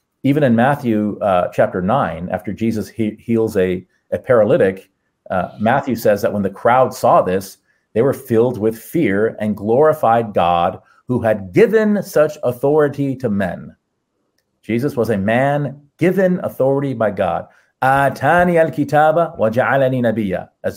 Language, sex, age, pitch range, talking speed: English, male, 40-59, 100-135 Hz, 135 wpm